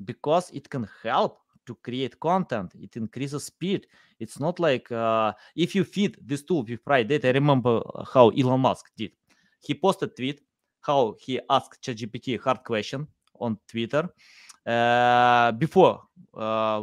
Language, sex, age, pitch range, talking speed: English, male, 20-39, 110-150 Hz, 155 wpm